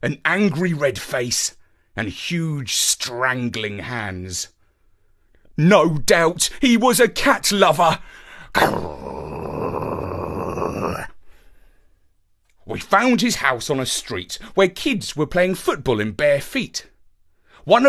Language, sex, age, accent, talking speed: English, male, 40-59, British, 105 wpm